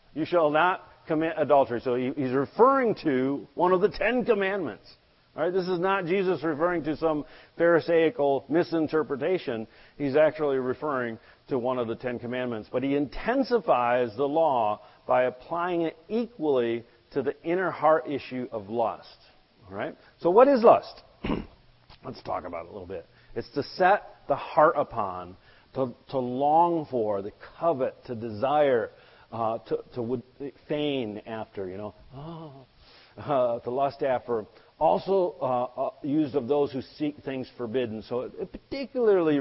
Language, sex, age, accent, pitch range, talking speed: English, male, 40-59, American, 120-160 Hz, 155 wpm